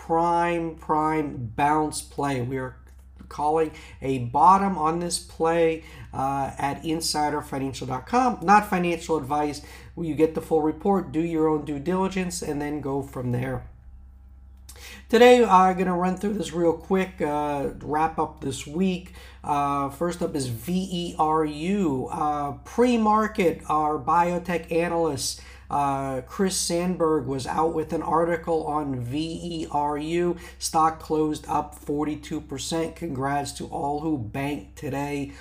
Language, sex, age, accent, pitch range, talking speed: English, male, 50-69, American, 140-170 Hz, 130 wpm